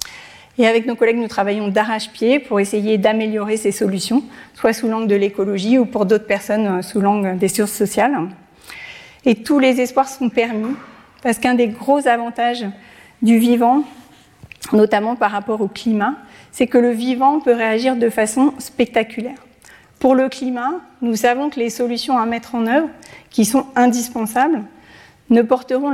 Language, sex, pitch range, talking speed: French, female, 220-255 Hz, 160 wpm